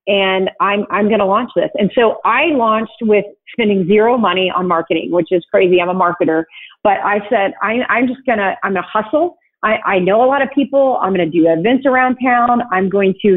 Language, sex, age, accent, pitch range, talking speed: English, female, 40-59, American, 195-255 Hz, 215 wpm